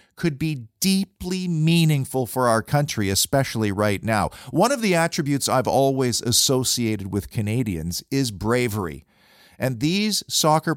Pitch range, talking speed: 110-160 Hz, 135 wpm